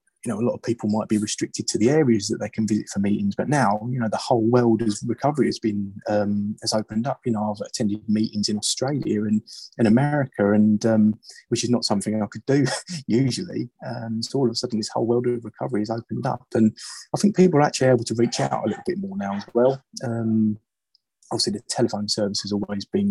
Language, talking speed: English, 240 wpm